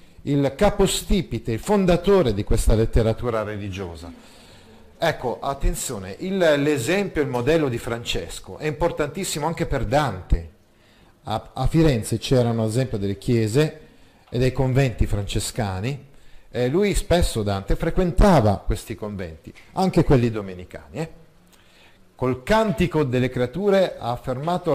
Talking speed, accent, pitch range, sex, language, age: 120 wpm, native, 110-155 Hz, male, Italian, 50-69